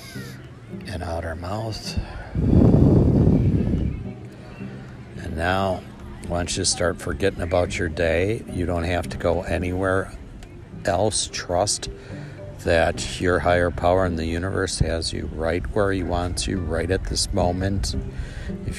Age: 60-79